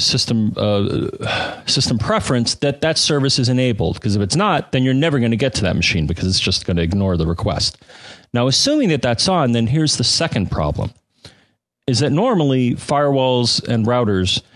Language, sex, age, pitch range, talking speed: English, male, 30-49, 105-135 Hz, 190 wpm